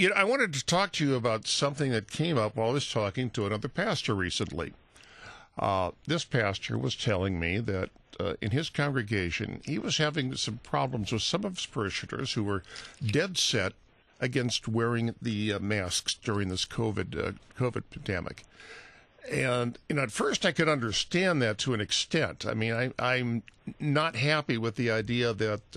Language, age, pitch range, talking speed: English, 50-69, 105-145 Hz, 185 wpm